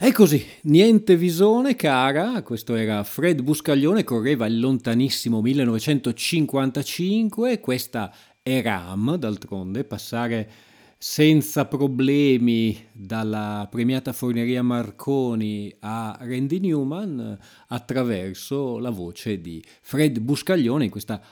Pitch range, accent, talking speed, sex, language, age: 105-140 Hz, native, 100 wpm, male, Italian, 30-49